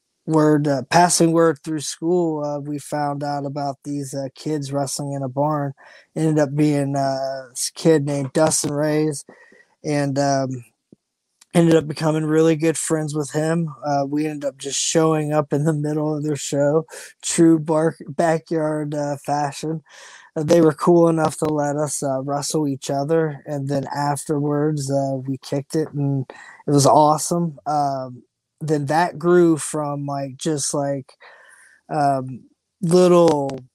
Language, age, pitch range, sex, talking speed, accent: English, 20-39, 140-160 Hz, male, 160 wpm, American